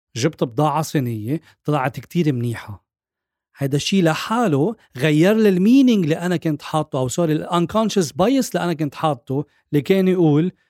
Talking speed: 150 wpm